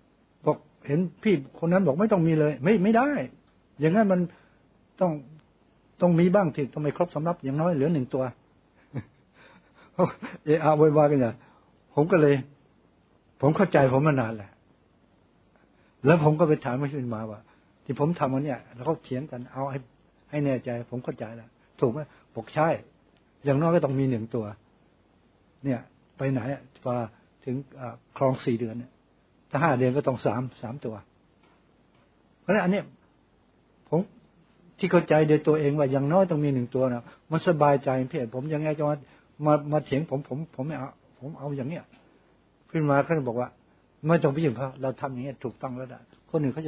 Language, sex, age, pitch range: English, male, 60-79, 125-155 Hz